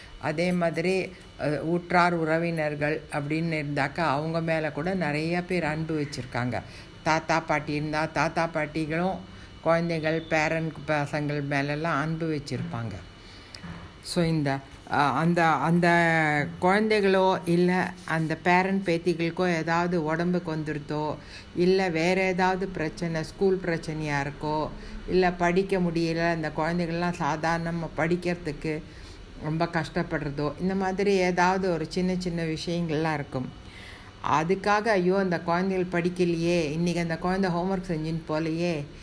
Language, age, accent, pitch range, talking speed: Tamil, 60-79, native, 150-180 Hz, 110 wpm